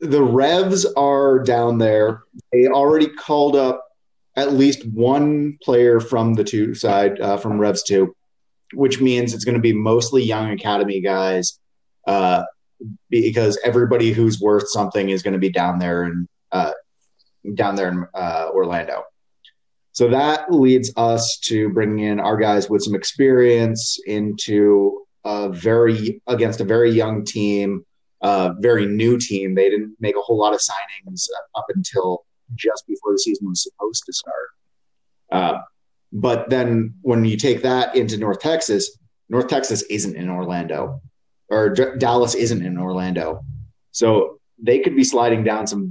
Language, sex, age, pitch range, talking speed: English, male, 30-49, 95-125 Hz, 155 wpm